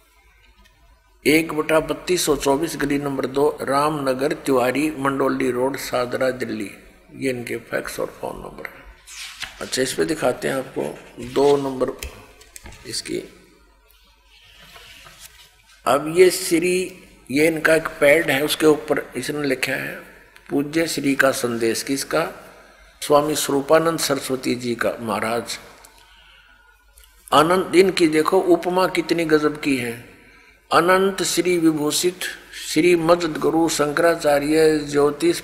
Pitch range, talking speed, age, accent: 140-175 Hz, 115 wpm, 60-79, native